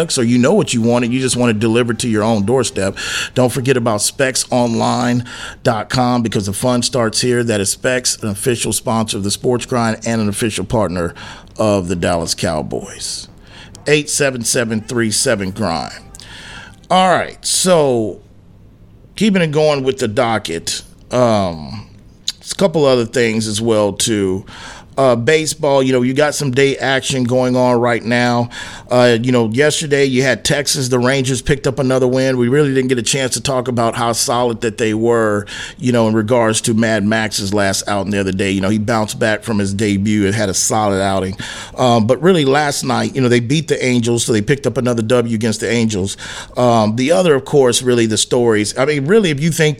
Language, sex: English, male